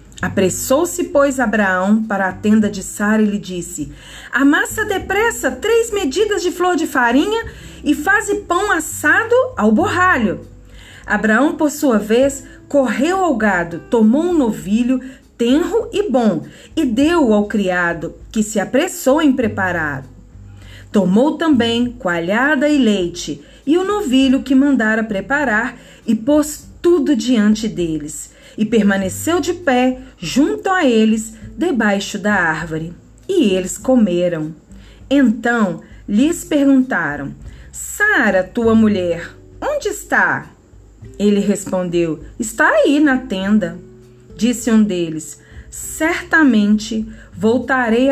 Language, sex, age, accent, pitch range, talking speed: Portuguese, female, 40-59, Brazilian, 190-290 Hz, 120 wpm